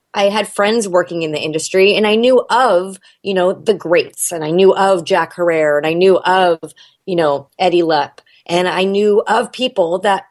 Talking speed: 205 wpm